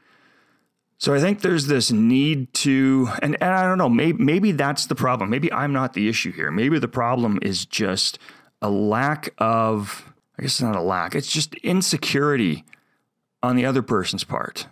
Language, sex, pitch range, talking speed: English, male, 110-150 Hz, 185 wpm